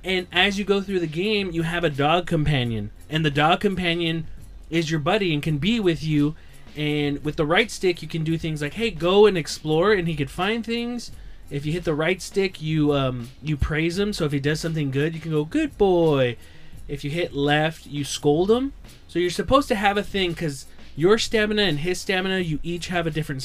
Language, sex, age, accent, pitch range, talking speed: English, male, 20-39, American, 145-195 Hz, 230 wpm